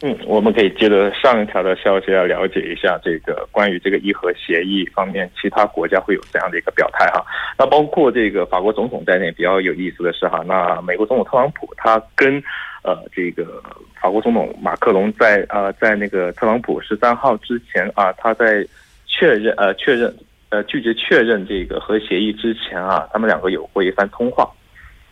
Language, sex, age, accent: Korean, male, 20-39, Chinese